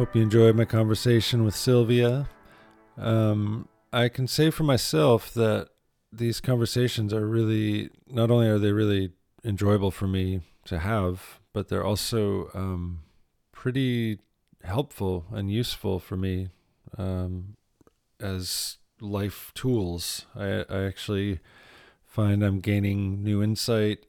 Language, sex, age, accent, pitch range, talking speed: English, male, 40-59, American, 95-115 Hz, 125 wpm